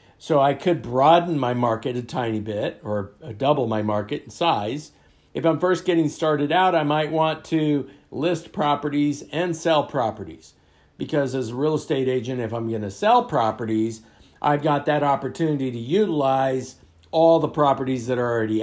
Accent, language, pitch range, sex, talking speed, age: American, English, 105-135 Hz, male, 175 wpm, 50-69